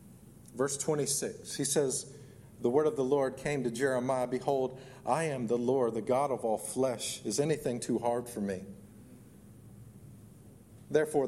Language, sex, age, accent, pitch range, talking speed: English, male, 40-59, American, 115-135 Hz, 155 wpm